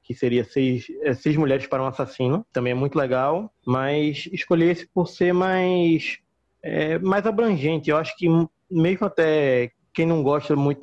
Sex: male